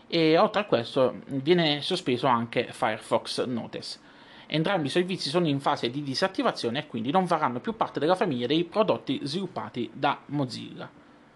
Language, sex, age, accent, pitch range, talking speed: Italian, male, 30-49, native, 125-175 Hz, 160 wpm